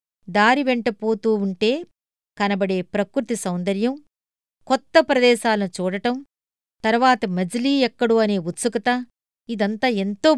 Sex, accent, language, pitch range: female, native, Telugu, 195-255 Hz